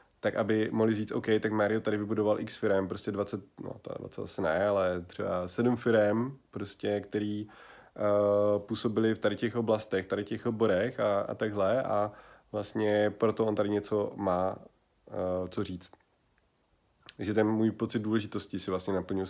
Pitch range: 100-115 Hz